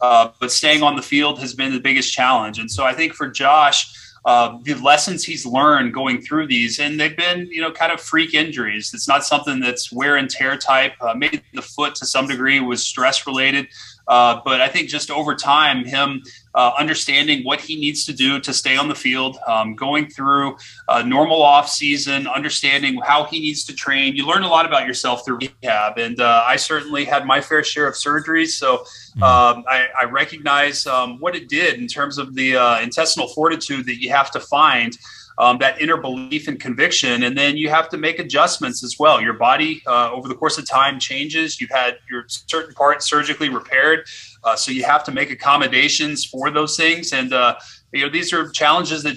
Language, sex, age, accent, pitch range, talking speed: English, male, 30-49, American, 125-150 Hz, 210 wpm